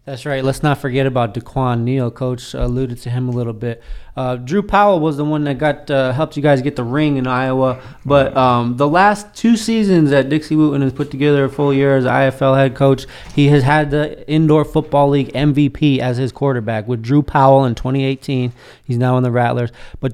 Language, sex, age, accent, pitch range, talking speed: English, male, 20-39, American, 120-145 Hz, 220 wpm